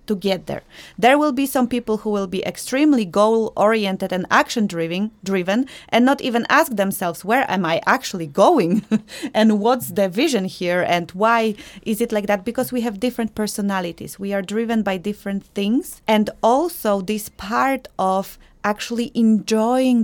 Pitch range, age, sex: 195-230 Hz, 30-49, female